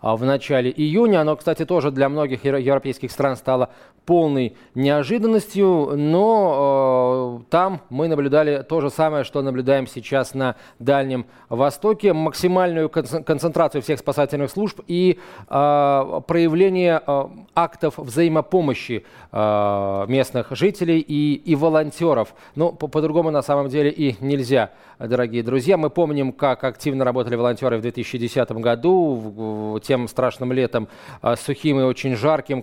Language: Russian